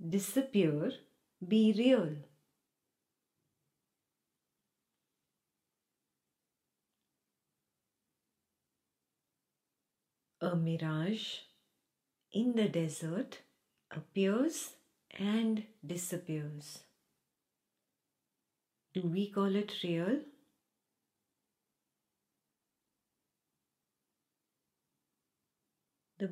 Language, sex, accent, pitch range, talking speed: English, female, Indian, 165-210 Hz, 40 wpm